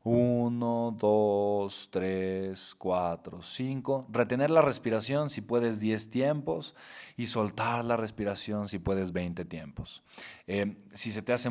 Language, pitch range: Spanish, 105-145 Hz